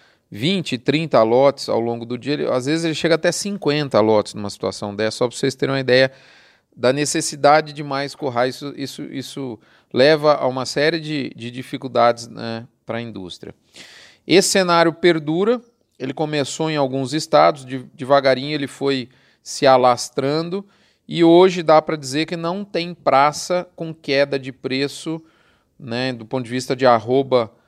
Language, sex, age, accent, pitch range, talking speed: Portuguese, male, 40-59, Brazilian, 125-160 Hz, 160 wpm